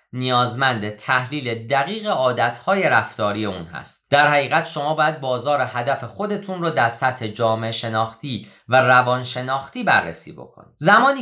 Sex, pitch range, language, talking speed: male, 120-170 Hz, Persian, 135 wpm